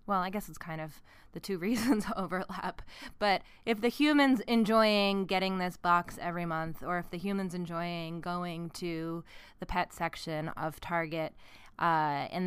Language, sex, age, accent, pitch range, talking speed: English, female, 20-39, American, 160-185 Hz, 165 wpm